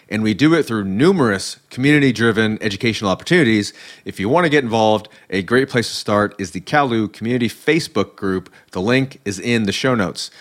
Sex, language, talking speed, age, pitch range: male, English, 190 wpm, 30-49, 100-130 Hz